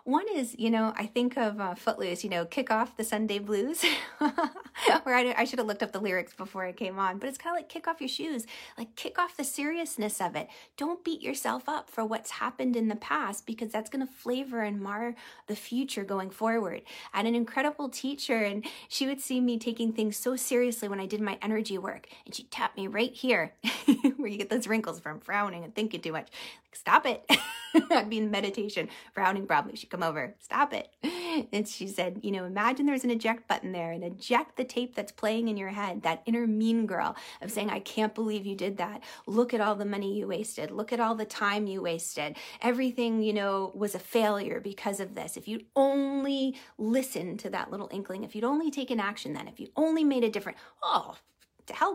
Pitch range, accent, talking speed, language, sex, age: 205-260 Hz, American, 225 wpm, English, female, 30-49